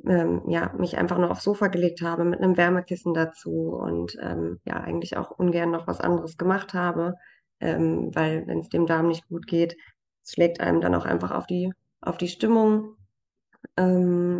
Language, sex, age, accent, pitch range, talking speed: German, female, 20-39, German, 155-180 Hz, 185 wpm